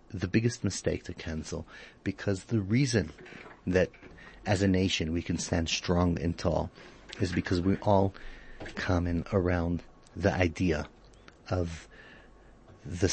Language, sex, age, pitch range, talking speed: English, male, 30-49, 90-110 Hz, 130 wpm